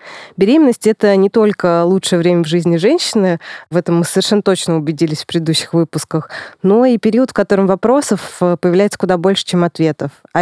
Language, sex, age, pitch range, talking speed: Russian, female, 20-39, 165-210 Hz, 175 wpm